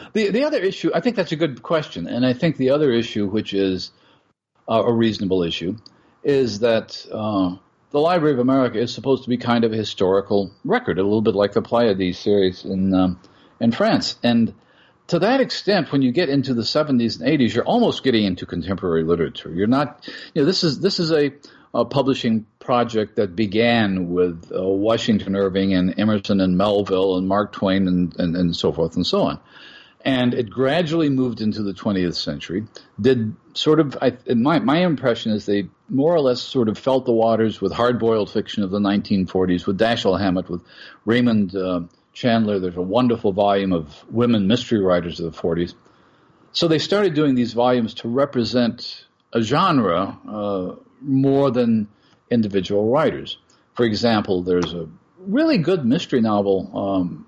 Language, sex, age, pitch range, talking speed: English, male, 50-69, 95-130 Hz, 180 wpm